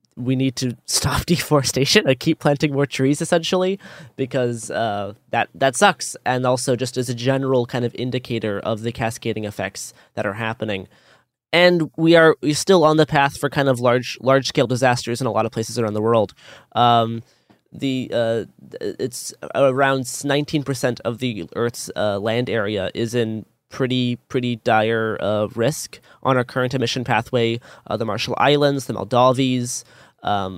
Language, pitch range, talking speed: English, 115-140 Hz, 170 wpm